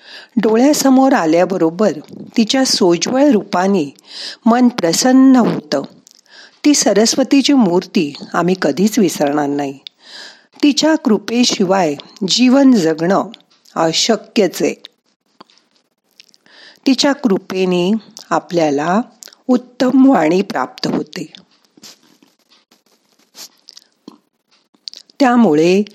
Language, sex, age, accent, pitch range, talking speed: Marathi, female, 50-69, native, 180-255 Hz, 65 wpm